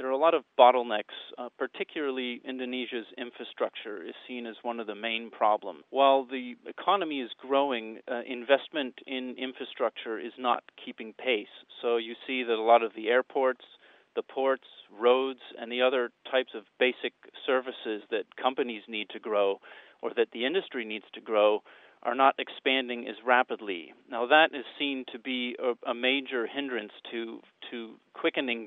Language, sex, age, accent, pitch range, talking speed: English, male, 40-59, American, 115-130 Hz, 165 wpm